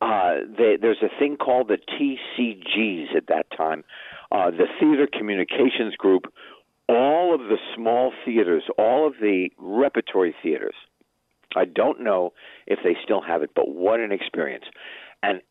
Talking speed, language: 145 wpm, English